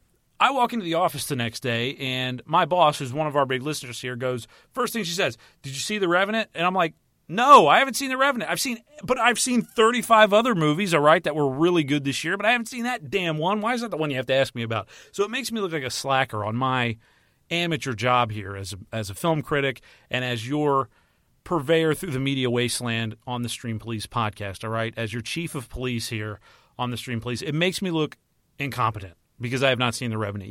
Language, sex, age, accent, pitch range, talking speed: English, male, 40-59, American, 120-170 Hz, 250 wpm